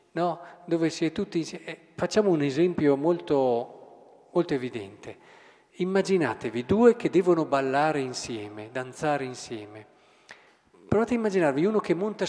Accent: native